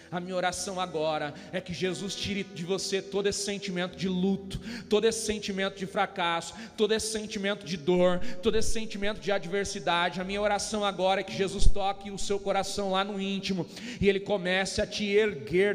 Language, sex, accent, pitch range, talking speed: Portuguese, male, Brazilian, 205-260 Hz, 190 wpm